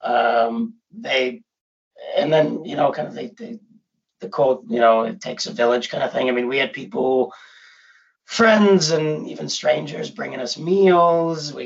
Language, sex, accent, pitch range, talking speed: English, male, American, 125-180 Hz, 185 wpm